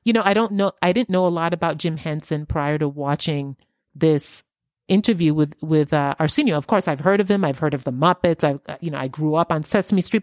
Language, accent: English, American